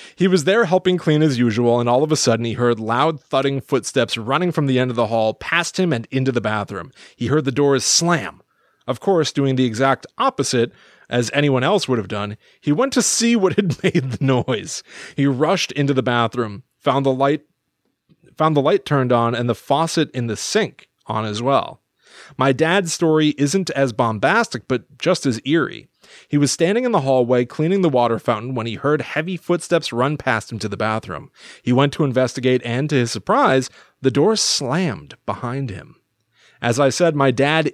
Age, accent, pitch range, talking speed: 30-49, American, 120-160 Hz, 200 wpm